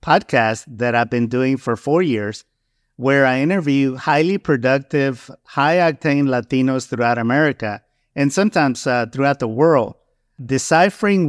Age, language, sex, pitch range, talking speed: 50-69, English, male, 120-155 Hz, 130 wpm